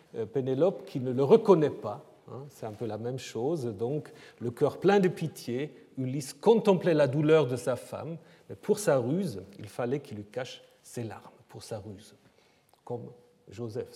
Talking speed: 180 wpm